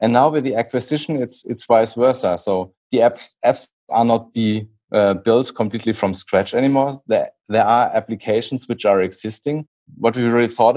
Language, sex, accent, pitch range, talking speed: English, male, German, 105-135 Hz, 185 wpm